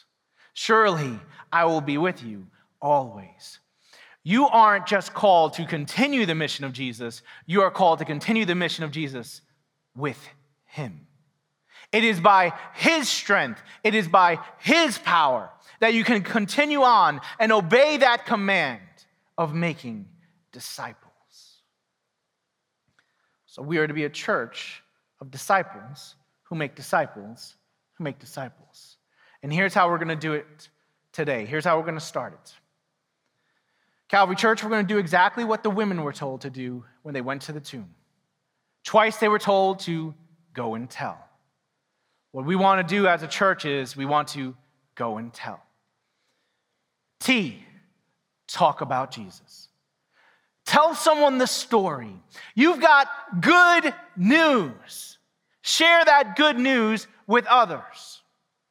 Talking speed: 145 wpm